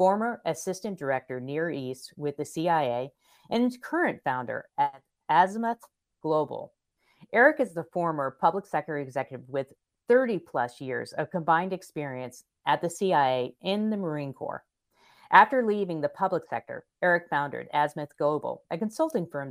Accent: American